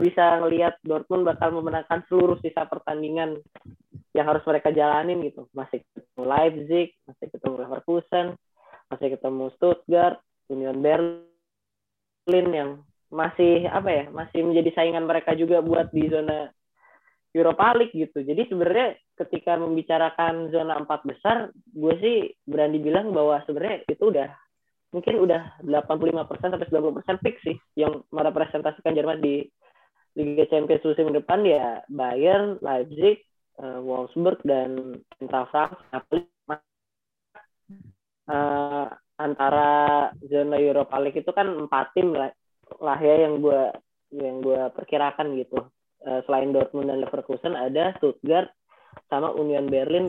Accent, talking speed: native, 125 wpm